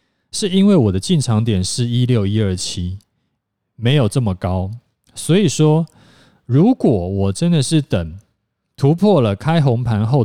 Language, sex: Chinese, male